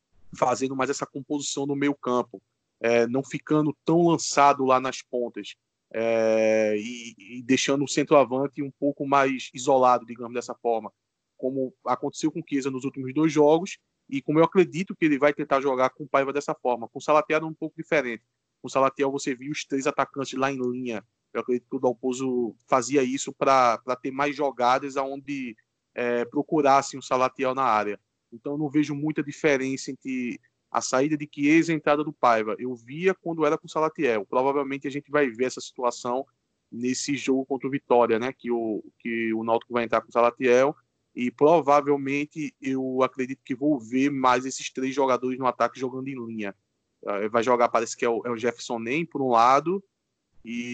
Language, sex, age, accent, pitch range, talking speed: Portuguese, male, 20-39, Brazilian, 120-145 Hz, 190 wpm